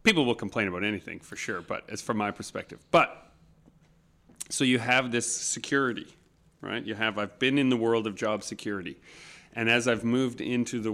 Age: 30-49